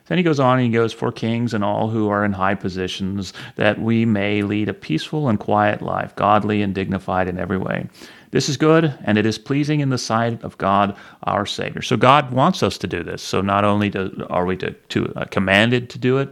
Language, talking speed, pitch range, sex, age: English, 240 wpm, 100-125 Hz, male, 30-49